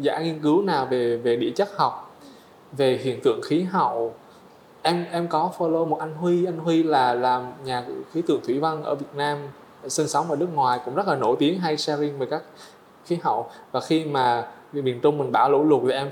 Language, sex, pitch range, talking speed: Vietnamese, male, 125-165 Hz, 220 wpm